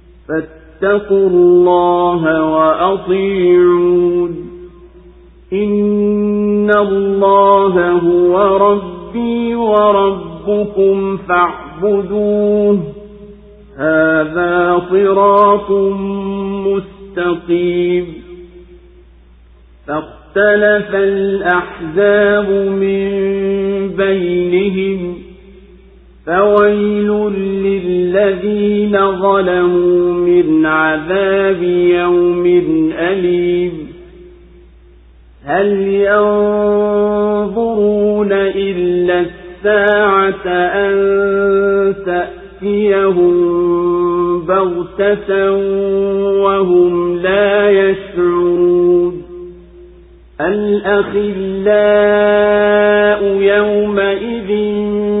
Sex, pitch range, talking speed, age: male, 175-205 Hz, 40 wpm, 50-69